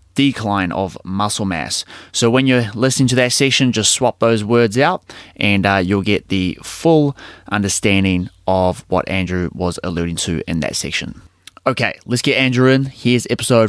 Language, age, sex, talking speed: English, 20-39, male, 170 wpm